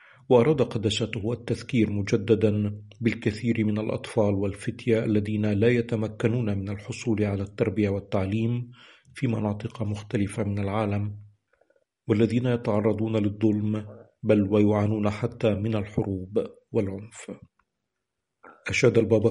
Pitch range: 105-115 Hz